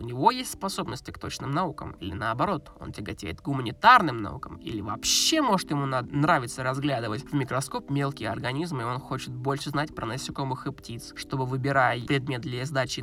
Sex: male